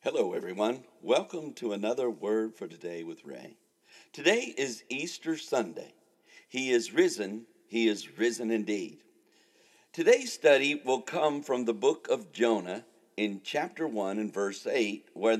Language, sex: English, male